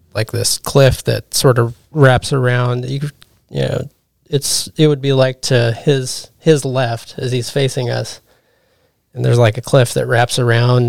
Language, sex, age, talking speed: English, male, 30-49, 175 wpm